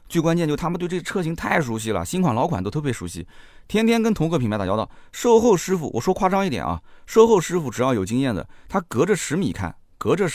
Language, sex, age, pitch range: Chinese, male, 30-49, 90-130 Hz